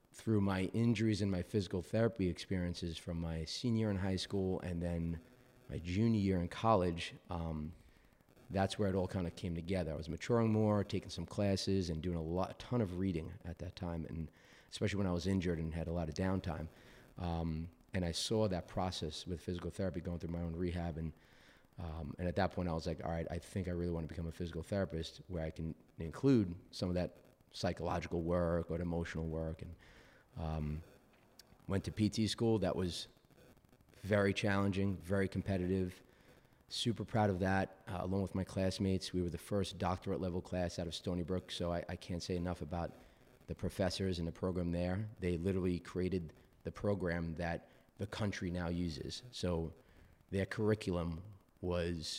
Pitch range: 85-95 Hz